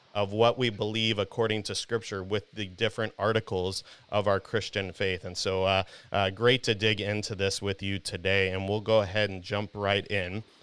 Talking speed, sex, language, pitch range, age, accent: 200 wpm, male, English, 100-120 Hz, 30-49, American